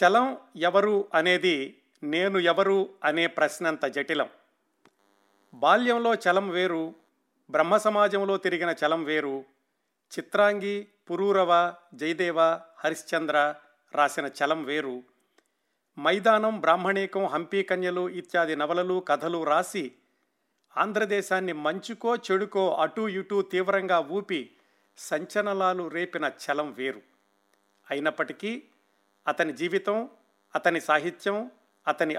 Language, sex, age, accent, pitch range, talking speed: Telugu, male, 50-69, native, 155-200 Hz, 90 wpm